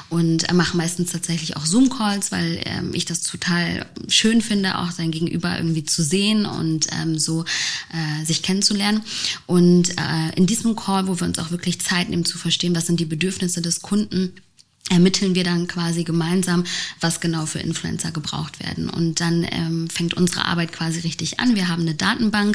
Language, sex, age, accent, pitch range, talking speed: German, female, 20-39, German, 165-180 Hz, 185 wpm